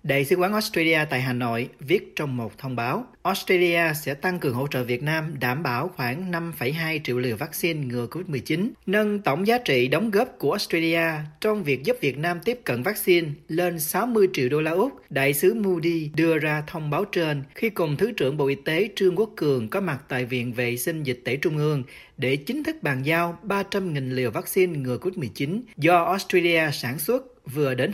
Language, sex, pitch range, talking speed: Vietnamese, male, 135-185 Hz, 205 wpm